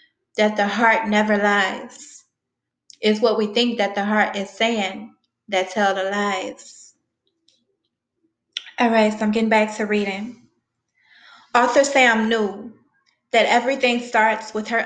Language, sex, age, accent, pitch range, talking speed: English, female, 20-39, American, 210-245 Hz, 135 wpm